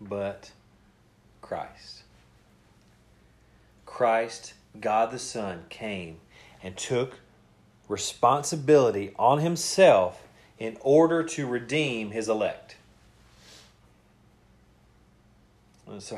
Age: 40-59